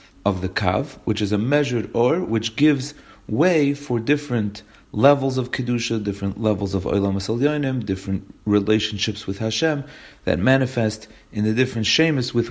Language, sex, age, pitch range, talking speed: English, male, 40-59, 105-130 Hz, 155 wpm